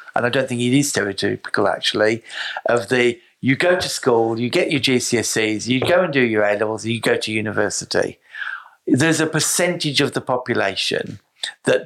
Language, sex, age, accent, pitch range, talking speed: English, male, 50-69, British, 115-160 Hz, 175 wpm